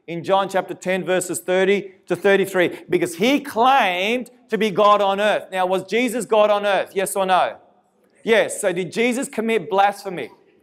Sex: male